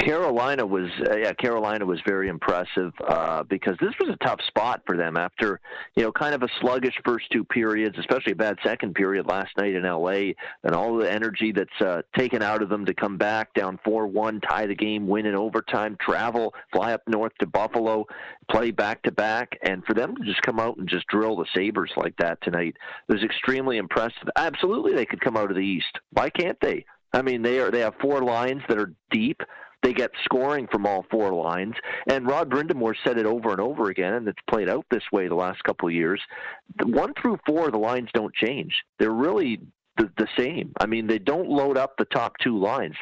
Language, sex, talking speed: English, male, 220 wpm